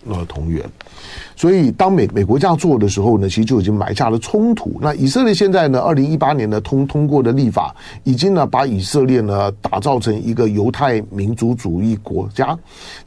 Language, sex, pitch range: Chinese, male, 100-150 Hz